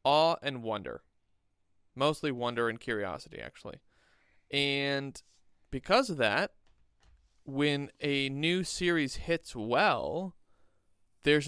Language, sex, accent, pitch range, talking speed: English, male, American, 115-160 Hz, 100 wpm